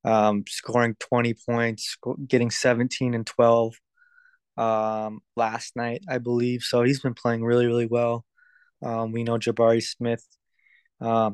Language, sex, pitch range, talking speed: English, male, 115-125 Hz, 140 wpm